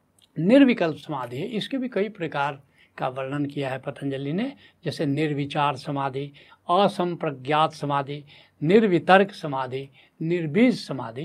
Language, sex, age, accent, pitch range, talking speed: Hindi, male, 70-89, native, 135-190 Hz, 115 wpm